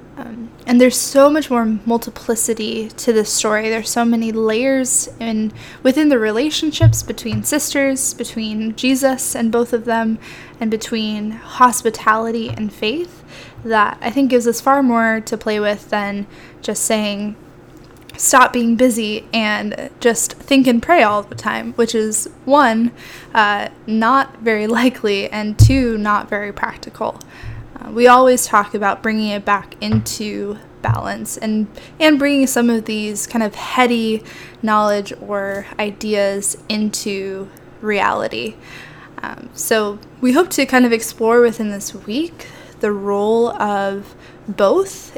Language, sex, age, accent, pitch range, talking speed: English, female, 10-29, American, 205-240 Hz, 140 wpm